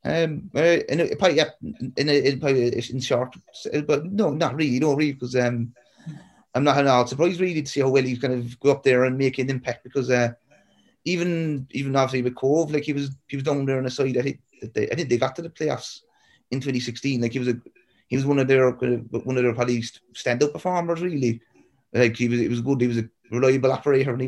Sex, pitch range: male, 125-150 Hz